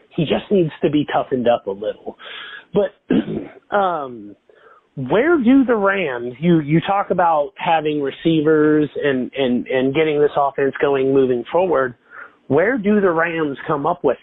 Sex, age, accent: male, 30-49, American